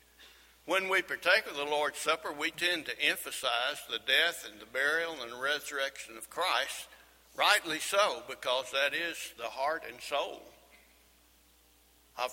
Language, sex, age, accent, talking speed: English, male, 60-79, American, 150 wpm